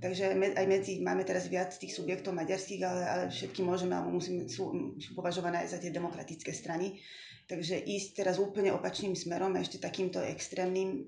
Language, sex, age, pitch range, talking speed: Slovak, female, 20-39, 175-190 Hz, 175 wpm